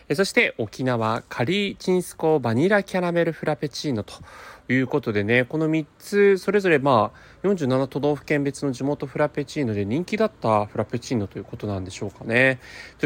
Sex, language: male, Japanese